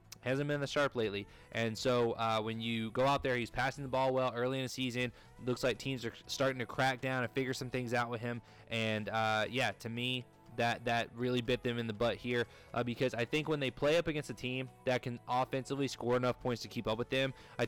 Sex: male